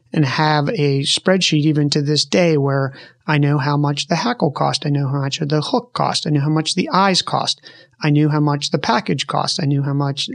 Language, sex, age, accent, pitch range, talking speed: English, male, 30-49, American, 145-170 Hz, 245 wpm